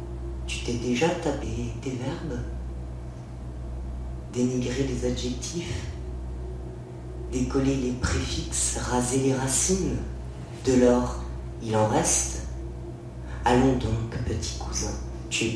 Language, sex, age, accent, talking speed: French, female, 40-59, French, 100 wpm